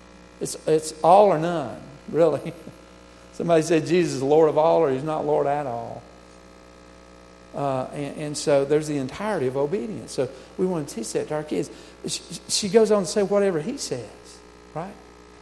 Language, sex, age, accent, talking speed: English, male, 50-69, American, 185 wpm